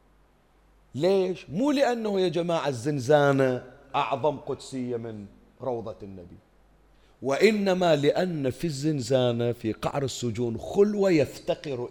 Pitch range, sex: 115-155 Hz, male